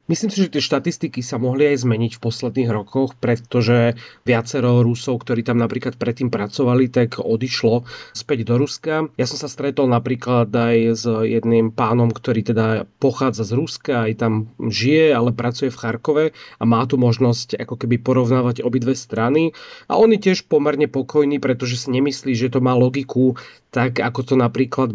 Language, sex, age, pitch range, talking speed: Slovak, male, 30-49, 120-140 Hz, 175 wpm